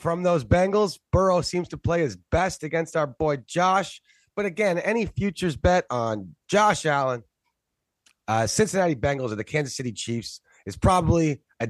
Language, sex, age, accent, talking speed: English, male, 30-49, American, 165 wpm